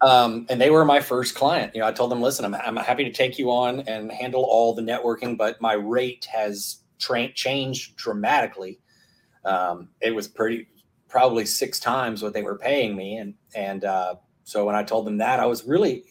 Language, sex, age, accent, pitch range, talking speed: English, male, 30-49, American, 110-125 Hz, 210 wpm